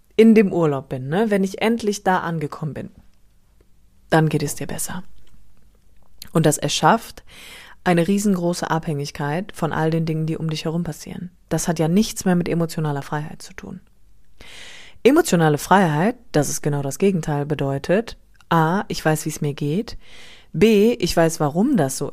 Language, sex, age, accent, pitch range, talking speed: German, female, 30-49, German, 150-190 Hz, 170 wpm